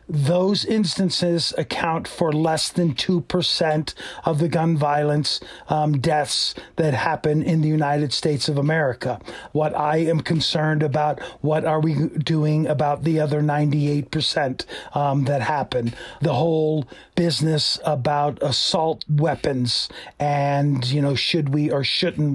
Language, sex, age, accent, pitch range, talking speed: English, male, 40-59, American, 150-180 Hz, 140 wpm